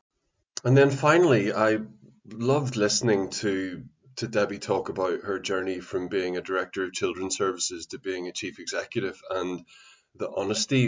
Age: 20-39